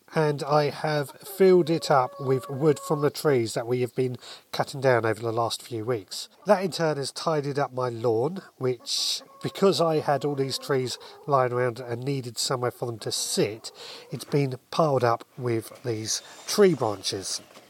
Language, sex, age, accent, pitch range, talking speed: English, male, 30-49, British, 125-165 Hz, 185 wpm